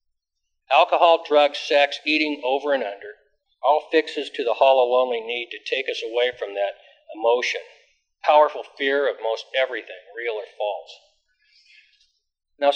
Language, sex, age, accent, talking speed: English, male, 50-69, American, 140 wpm